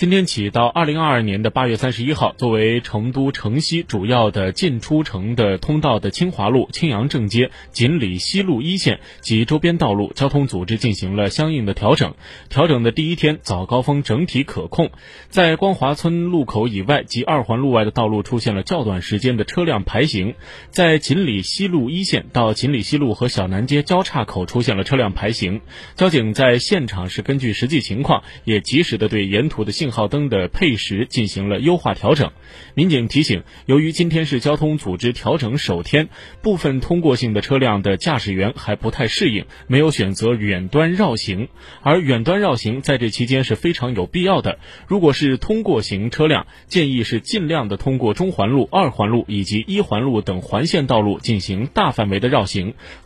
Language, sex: Chinese, male